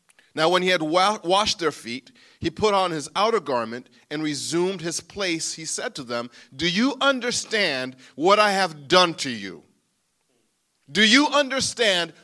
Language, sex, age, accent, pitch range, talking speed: English, male, 40-59, American, 165-250 Hz, 160 wpm